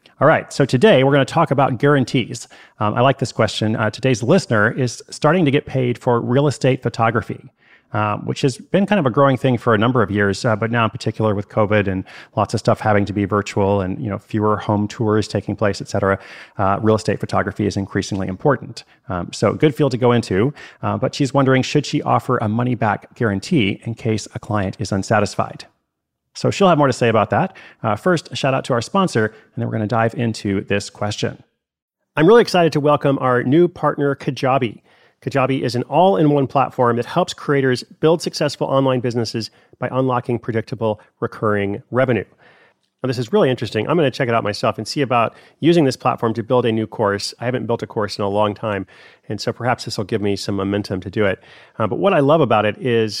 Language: English